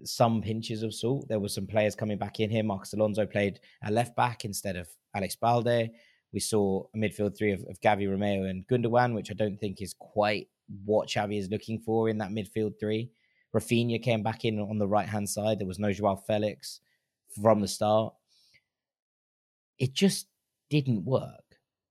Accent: British